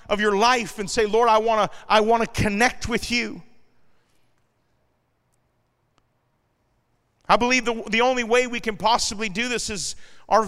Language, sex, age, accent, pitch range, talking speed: English, male, 40-59, American, 185-250 Hz, 145 wpm